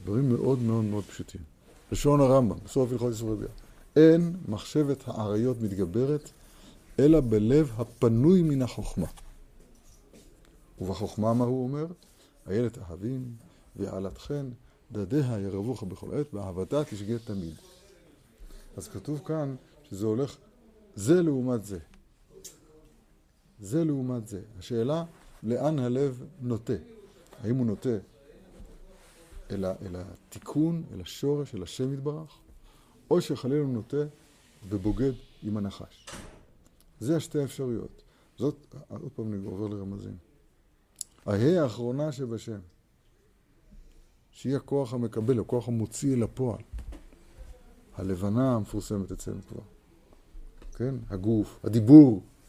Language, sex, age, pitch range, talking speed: Hebrew, male, 50-69, 105-145 Hz, 105 wpm